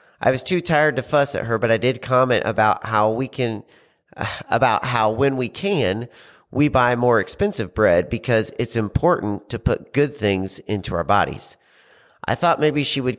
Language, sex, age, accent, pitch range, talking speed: English, male, 40-59, American, 105-130 Hz, 185 wpm